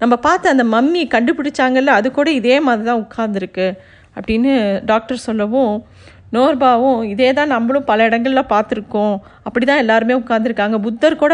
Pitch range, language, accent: 225-275 Hz, Tamil, native